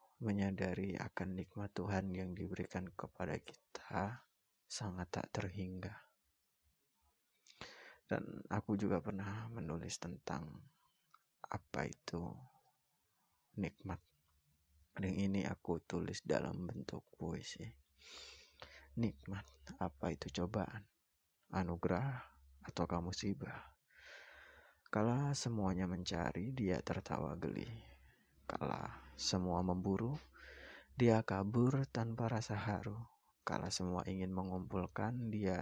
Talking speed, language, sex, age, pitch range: 90 wpm, Indonesian, male, 20-39, 90-110 Hz